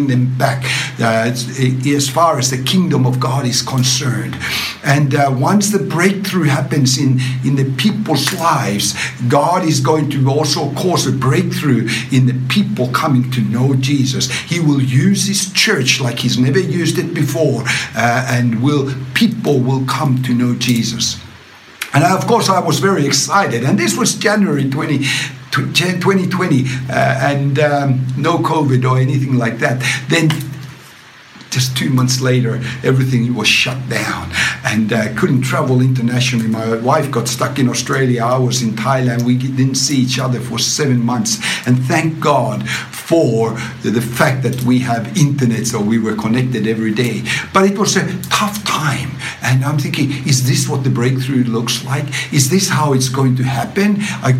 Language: English